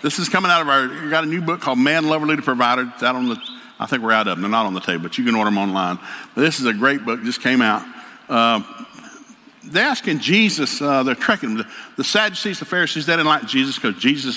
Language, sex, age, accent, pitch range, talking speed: English, male, 60-79, American, 130-200 Hz, 265 wpm